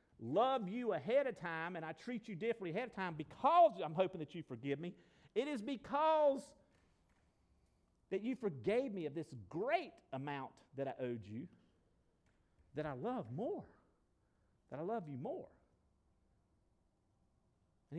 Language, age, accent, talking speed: English, 50-69, American, 150 wpm